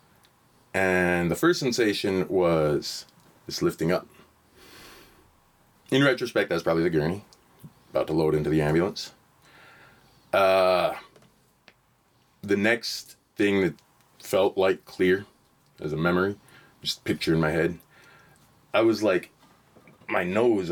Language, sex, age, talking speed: English, male, 30-49, 120 wpm